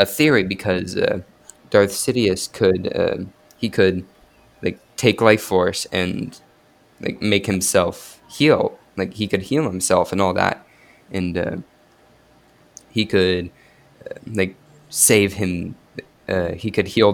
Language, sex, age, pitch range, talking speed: English, male, 20-39, 95-110 Hz, 135 wpm